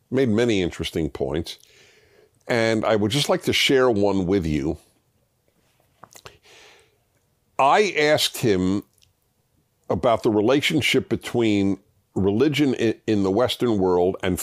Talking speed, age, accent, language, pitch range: 110 wpm, 50-69, American, English, 90-115 Hz